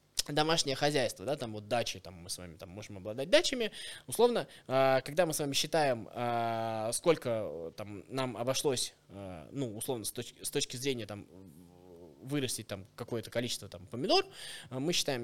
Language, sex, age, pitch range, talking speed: Russian, male, 20-39, 115-175 Hz, 150 wpm